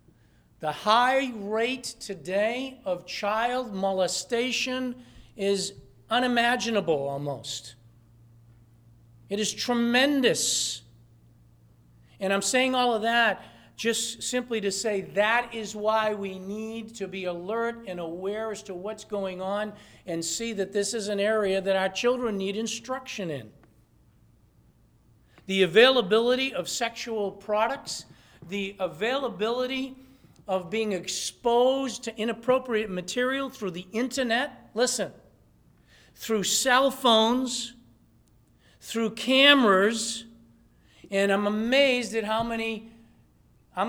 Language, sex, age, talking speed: English, male, 50-69, 110 wpm